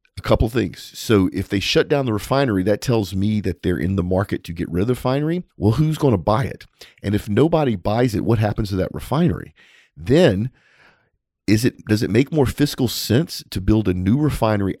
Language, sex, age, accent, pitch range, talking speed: English, male, 40-59, American, 95-115 Hz, 225 wpm